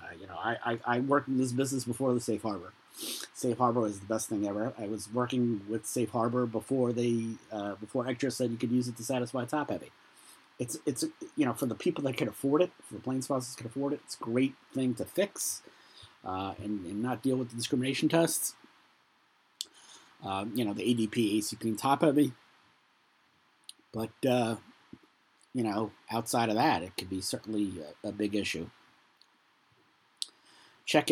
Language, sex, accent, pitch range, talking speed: English, male, American, 105-125 Hz, 185 wpm